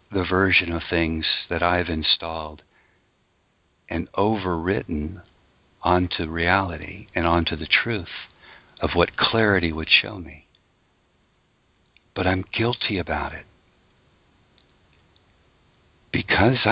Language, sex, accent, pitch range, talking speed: English, male, American, 80-100 Hz, 95 wpm